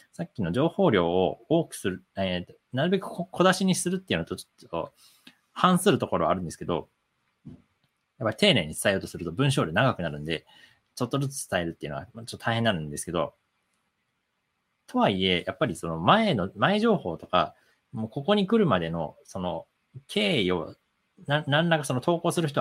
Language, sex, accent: Japanese, male, native